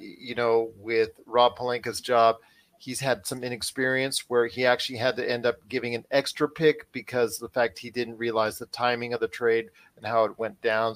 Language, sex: English, male